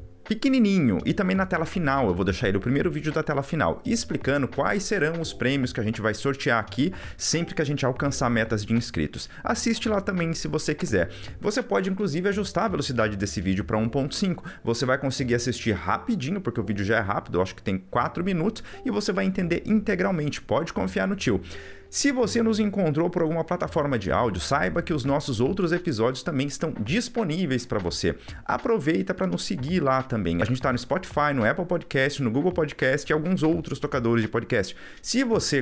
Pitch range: 115-185 Hz